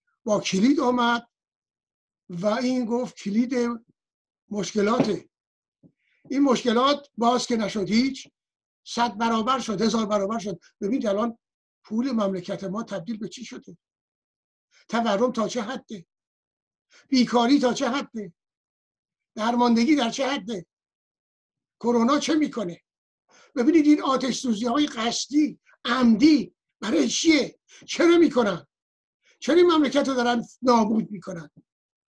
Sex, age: male, 60-79